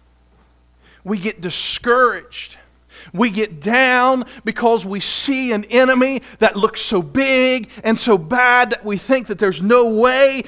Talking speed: 145 wpm